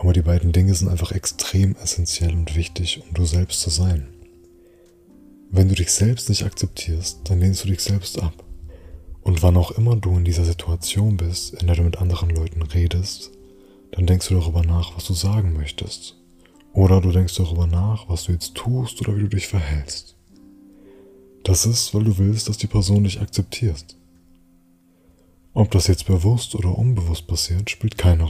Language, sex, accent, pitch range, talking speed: German, male, German, 85-100 Hz, 180 wpm